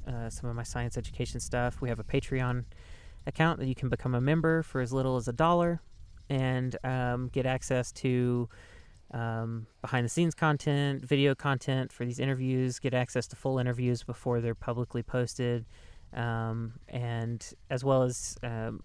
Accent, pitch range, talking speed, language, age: American, 120-135 Hz, 160 wpm, English, 30-49